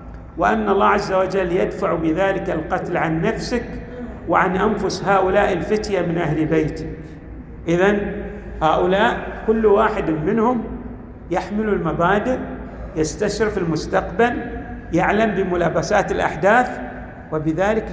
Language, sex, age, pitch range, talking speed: Arabic, male, 50-69, 190-245 Hz, 95 wpm